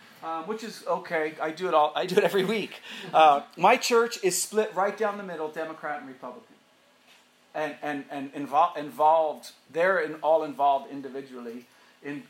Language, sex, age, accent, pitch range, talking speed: English, male, 40-59, American, 140-210 Hz, 175 wpm